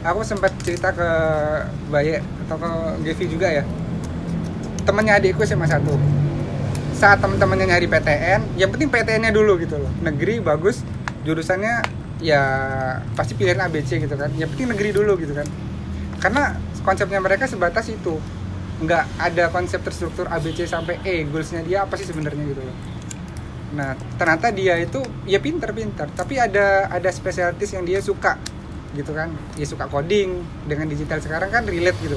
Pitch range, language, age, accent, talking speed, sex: 145-185 Hz, Indonesian, 20-39, native, 155 wpm, male